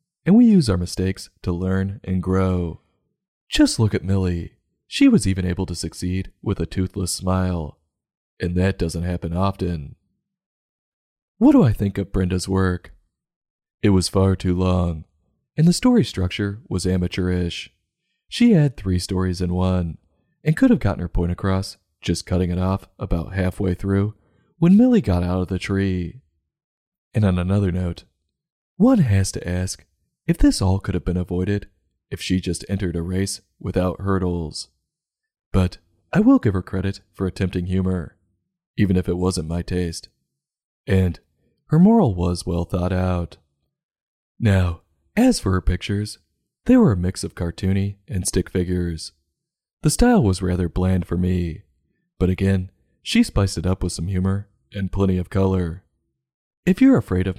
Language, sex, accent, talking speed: English, male, American, 165 wpm